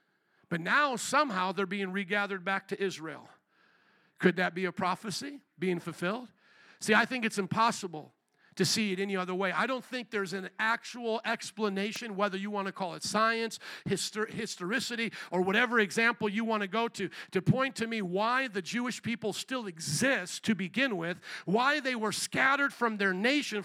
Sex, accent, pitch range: male, American, 185-255 Hz